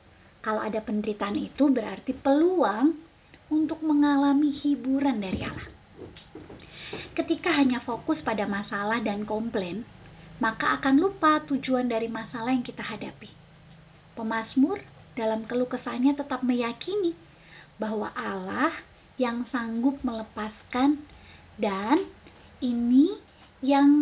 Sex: female